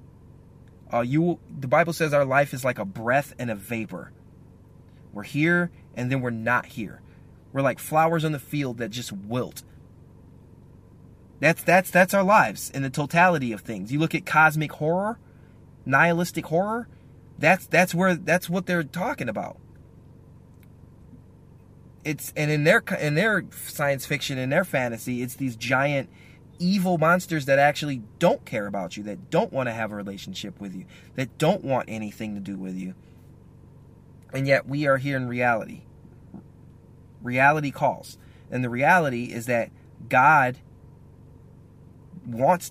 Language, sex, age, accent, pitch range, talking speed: English, male, 20-39, American, 120-155 Hz, 155 wpm